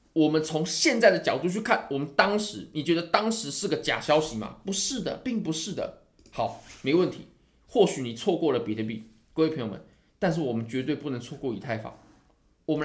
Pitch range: 120-200 Hz